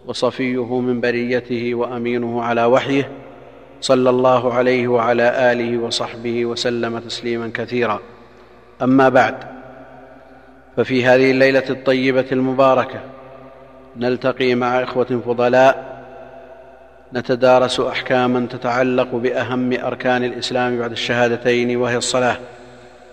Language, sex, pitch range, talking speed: Arabic, male, 120-130 Hz, 95 wpm